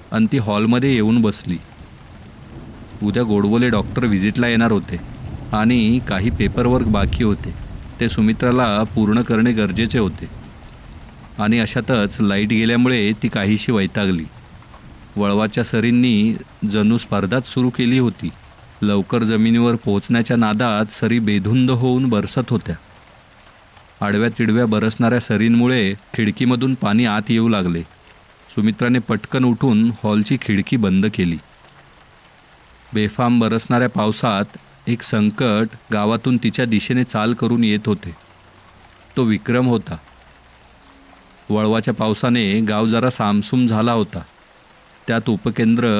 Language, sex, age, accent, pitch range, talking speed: Marathi, male, 40-59, native, 105-120 Hz, 110 wpm